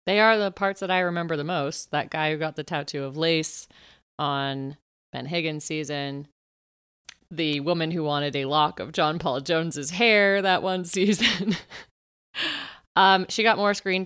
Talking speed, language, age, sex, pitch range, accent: 170 wpm, English, 30-49, female, 145-195 Hz, American